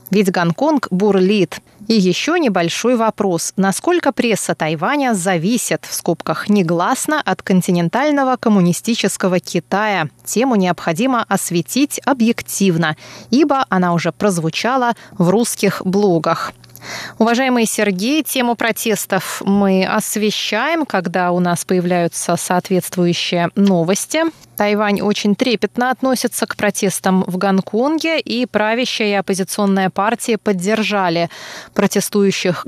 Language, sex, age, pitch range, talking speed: Russian, female, 20-39, 185-235 Hz, 105 wpm